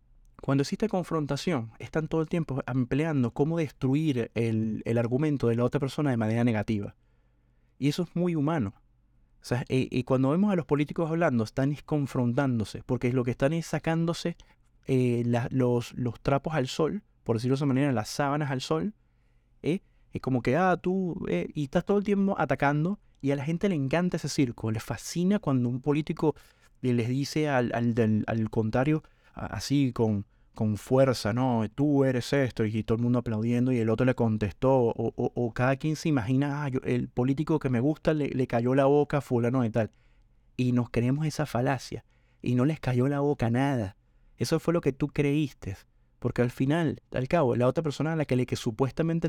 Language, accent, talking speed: Spanish, Argentinian, 205 wpm